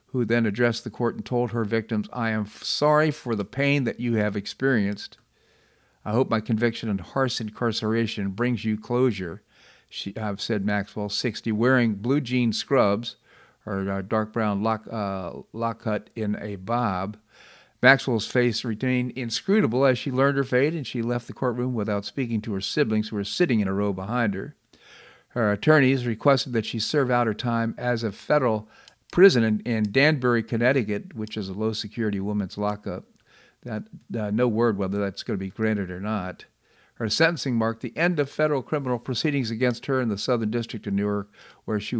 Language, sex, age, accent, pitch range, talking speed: English, male, 50-69, American, 105-125 Hz, 185 wpm